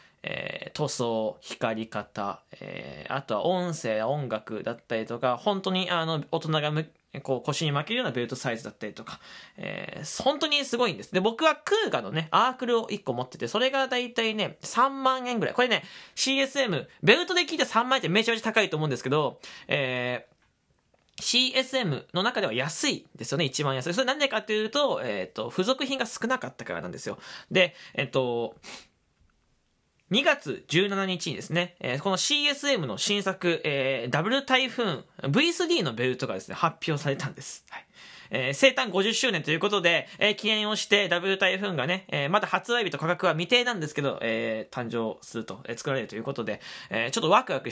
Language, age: Japanese, 20-39